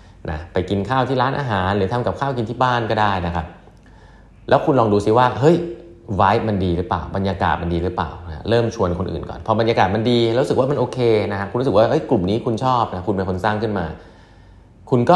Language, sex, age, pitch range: Thai, male, 20-39, 90-120 Hz